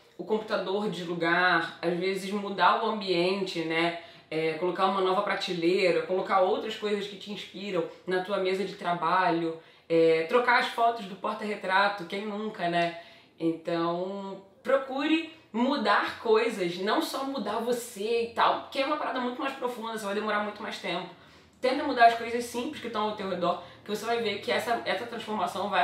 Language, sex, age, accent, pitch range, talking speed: Portuguese, female, 20-39, Brazilian, 175-220 Hz, 175 wpm